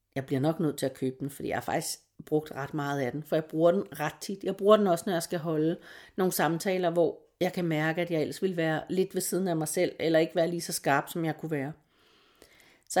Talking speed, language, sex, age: 270 wpm, Danish, female, 40-59